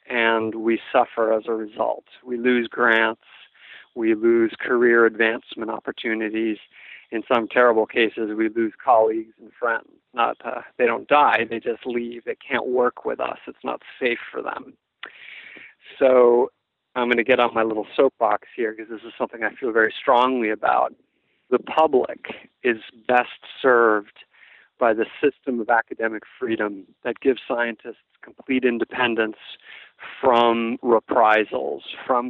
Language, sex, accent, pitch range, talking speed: English, male, American, 115-130 Hz, 145 wpm